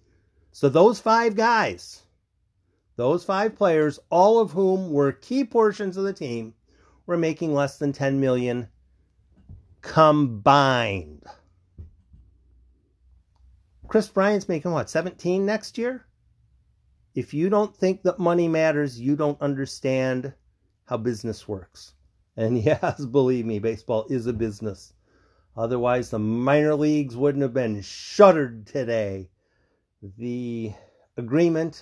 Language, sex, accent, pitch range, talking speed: English, male, American, 105-165 Hz, 115 wpm